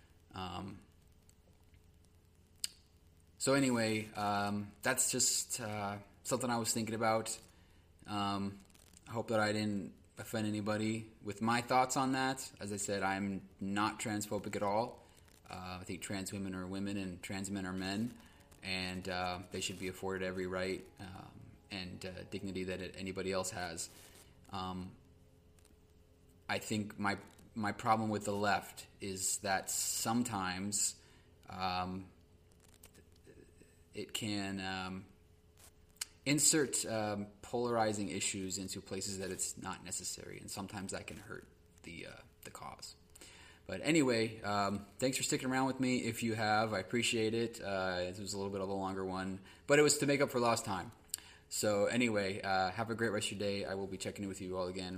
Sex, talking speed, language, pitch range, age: male, 160 wpm, English, 90-105 Hz, 20-39